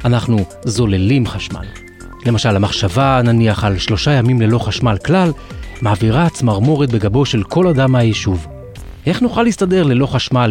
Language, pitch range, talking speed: Hebrew, 105-140 Hz, 135 wpm